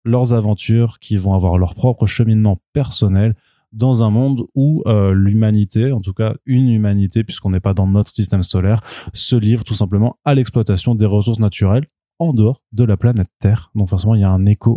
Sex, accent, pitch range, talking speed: male, French, 100-115 Hz, 200 wpm